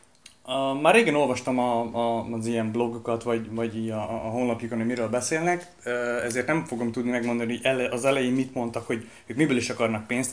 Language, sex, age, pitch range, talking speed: Hungarian, male, 30-49, 115-130 Hz, 200 wpm